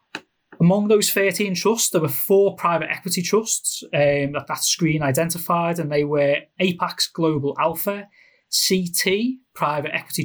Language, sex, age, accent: English, male, 30-49, British